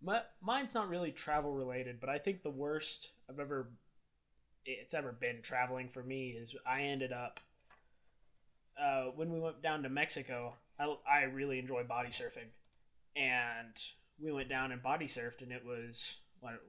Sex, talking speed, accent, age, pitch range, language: male, 170 wpm, American, 20-39, 120-145 Hz, English